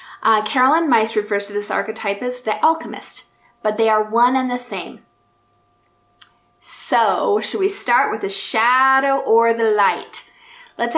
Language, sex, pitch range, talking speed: English, female, 215-280 Hz, 155 wpm